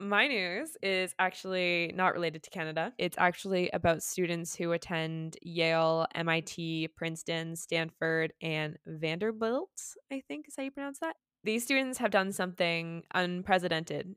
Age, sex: 20-39, female